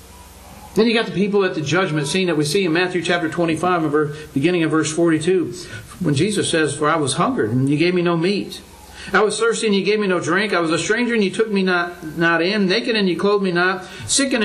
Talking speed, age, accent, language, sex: 255 wpm, 60-79, American, English, male